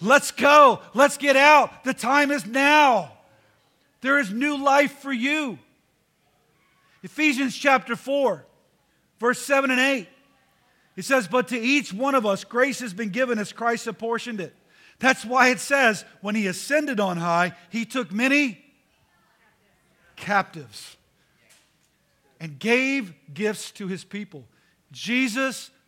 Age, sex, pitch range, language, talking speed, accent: 50-69, male, 185-260 Hz, English, 135 wpm, American